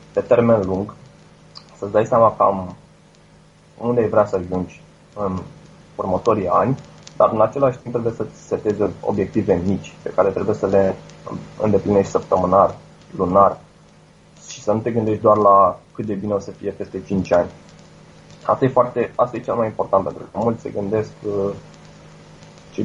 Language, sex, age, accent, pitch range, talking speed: Romanian, male, 20-39, native, 100-120 Hz, 165 wpm